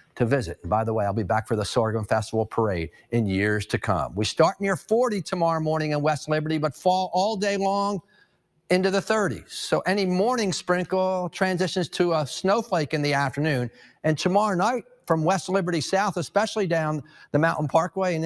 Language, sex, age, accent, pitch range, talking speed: English, male, 50-69, American, 140-195 Hz, 190 wpm